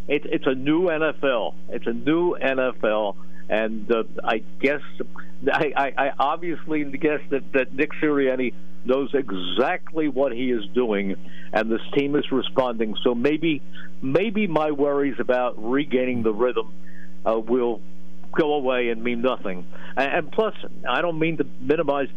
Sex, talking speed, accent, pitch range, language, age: male, 150 wpm, American, 90-145 Hz, English, 60-79